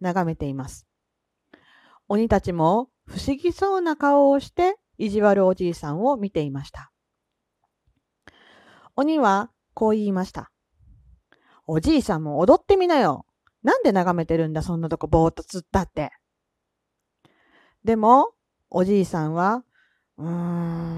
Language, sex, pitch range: Japanese, female, 170-250 Hz